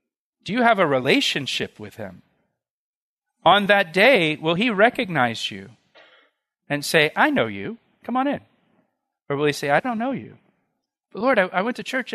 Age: 40-59